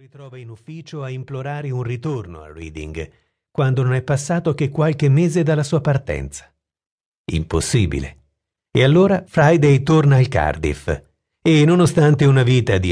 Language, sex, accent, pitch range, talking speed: Italian, male, native, 85-140 Hz, 145 wpm